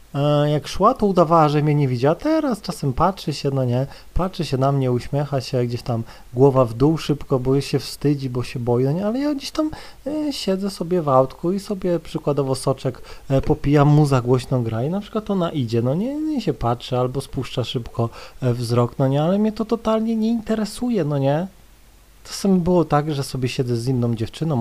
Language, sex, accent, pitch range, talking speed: Polish, male, native, 130-195 Hz, 205 wpm